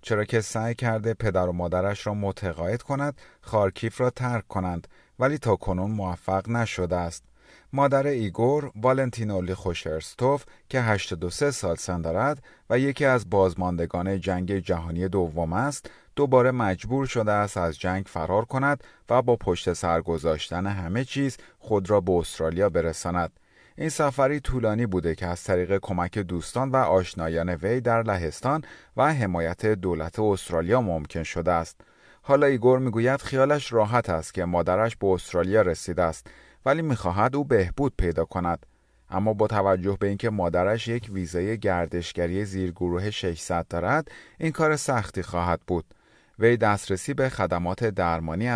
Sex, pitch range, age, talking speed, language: male, 90-120 Hz, 30-49, 150 wpm, Persian